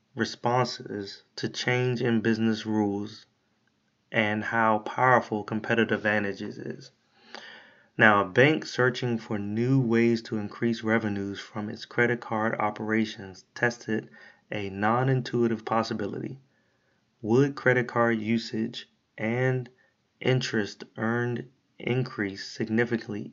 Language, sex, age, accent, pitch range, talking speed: English, male, 30-49, American, 105-120 Hz, 105 wpm